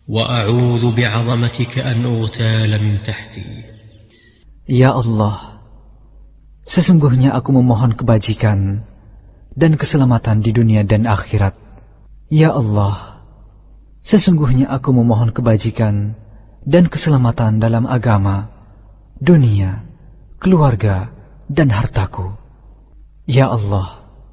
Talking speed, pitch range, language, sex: 70 wpm, 105-125 Hz, Indonesian, male